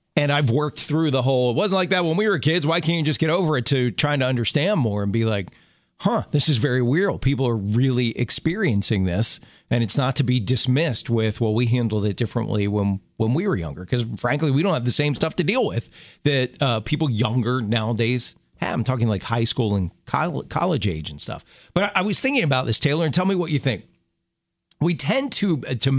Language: English